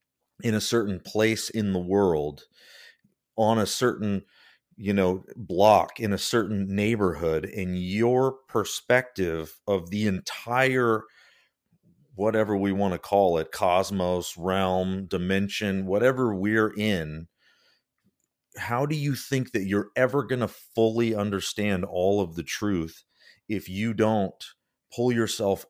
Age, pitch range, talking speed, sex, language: 40-59, 85-110 Hz, 130 wpm, male, English